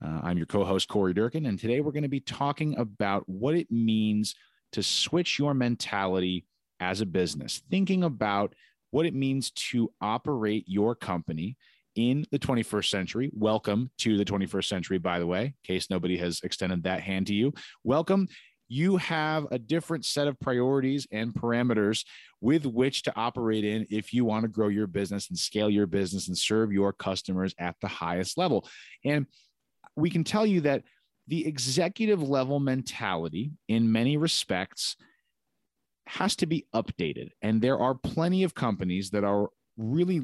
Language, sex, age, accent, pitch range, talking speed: English, male, 30-49, American, 100-140 Hz, 170 wpm